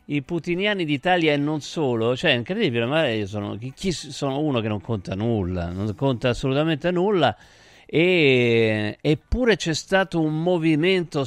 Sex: male